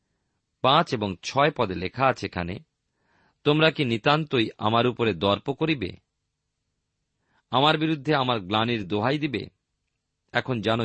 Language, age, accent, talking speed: Bengali, 40-59, native, 120 wpm